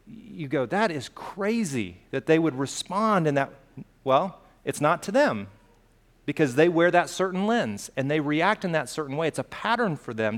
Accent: American